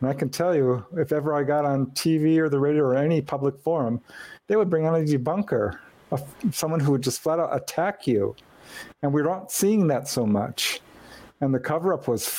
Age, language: 50-69, English